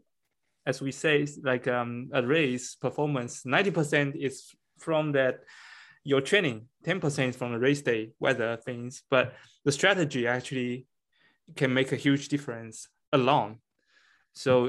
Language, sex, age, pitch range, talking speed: English, male, 20-39, 125-150 Hz, 140 wpm